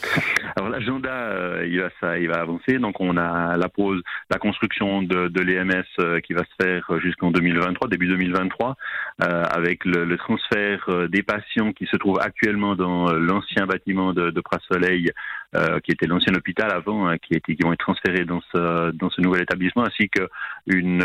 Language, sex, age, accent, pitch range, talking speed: French, male, 40-59, French, 85-95 Hz, 185 wpm